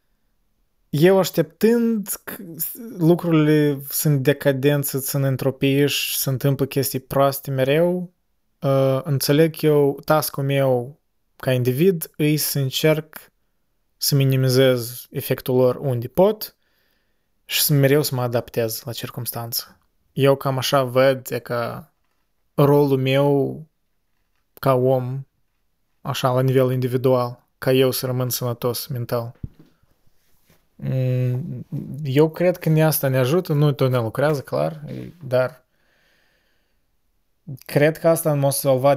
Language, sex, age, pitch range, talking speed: Romanian, male, 20-39, 125-150 Hz, 115 wpm